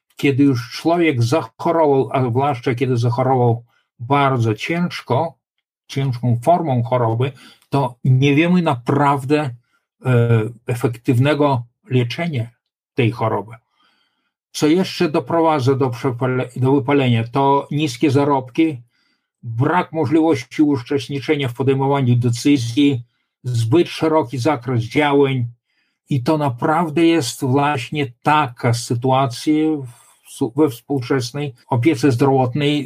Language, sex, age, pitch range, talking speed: Polish, male, 50-69, 125-155 Hz, 100 wpm